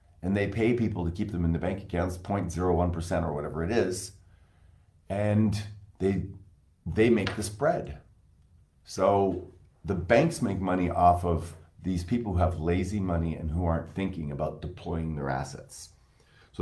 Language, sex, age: English, male, 40-59